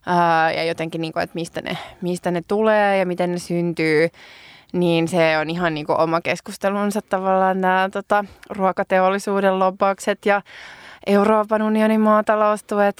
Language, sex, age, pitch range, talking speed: Finnish, female, 20-39, 165-195 Hz, 140 wpm